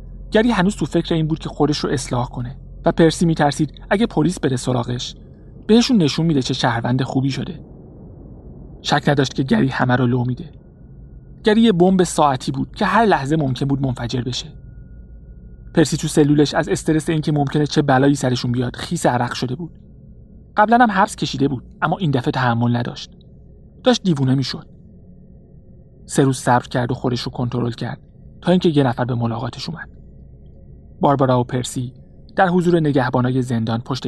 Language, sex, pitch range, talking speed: Persian, male, 120-160 Hz, 170 wpm